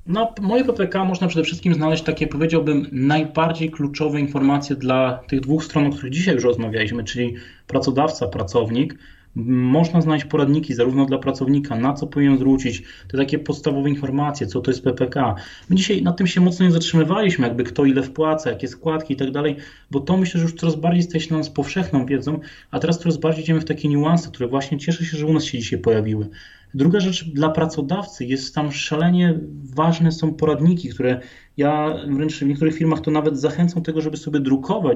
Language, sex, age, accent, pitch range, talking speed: Polish, male, 20-39, native, 135-160 Hz, 190 wpm